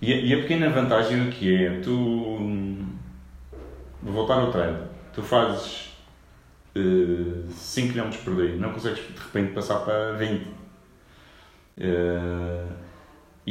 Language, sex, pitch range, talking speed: Portuguese, male, 95-115 Hz, 120 wpm